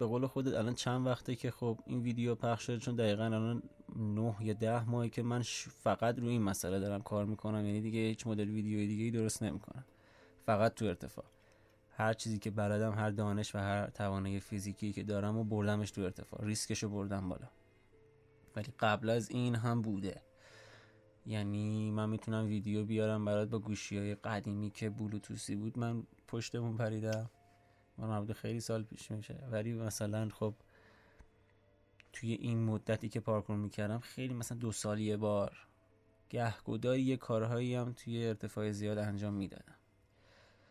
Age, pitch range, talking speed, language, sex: 20-39, 105-115 Hz, 150 wpm, Persian, male